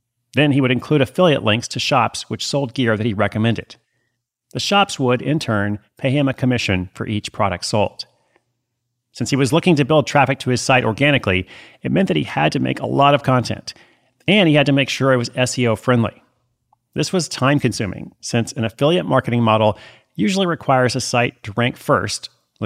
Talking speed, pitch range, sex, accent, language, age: 195 wpm, 115-140 Hz, male, American, English, 40-59